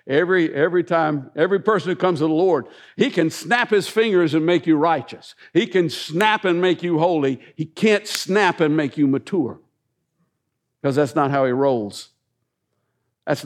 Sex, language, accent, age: male, English, American, 60-79